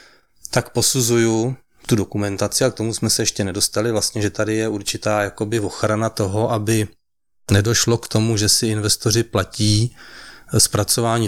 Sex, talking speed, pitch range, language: male, 150 wpm, 105-120 Hz, Czech